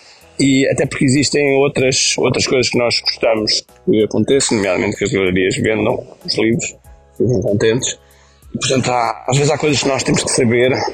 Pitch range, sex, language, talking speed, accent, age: 125-150 Hz, male, Portuguese, 180 wpm, Brazilian, 20-39